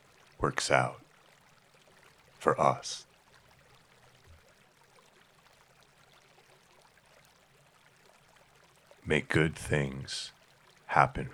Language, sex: English, male